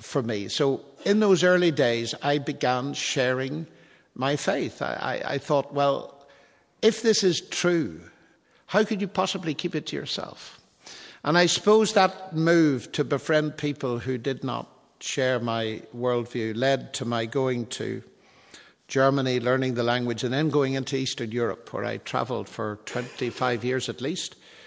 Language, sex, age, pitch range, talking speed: English, male, 60-79, 120-155 Hz, 160 wpm